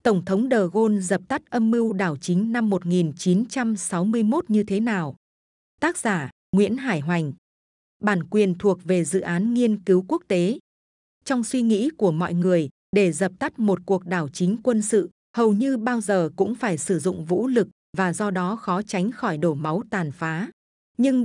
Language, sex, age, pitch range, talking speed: Vietnamese, female, 20-39, 185-230 Hz, 185 wpm